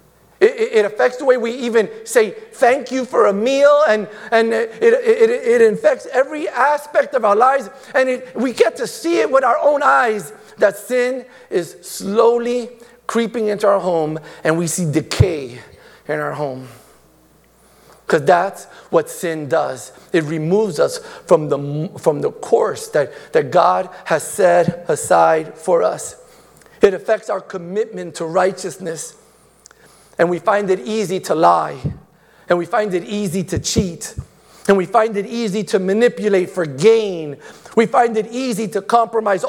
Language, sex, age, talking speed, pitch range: English, male, 50-69, 160 wpm, 200-280 Hz